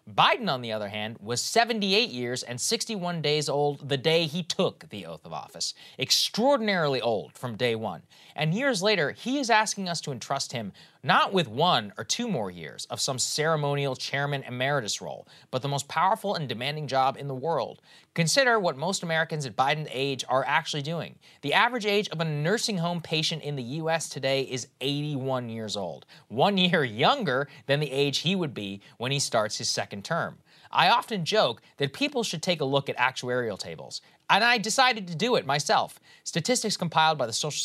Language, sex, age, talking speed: English, male, 30-49, 195 wpm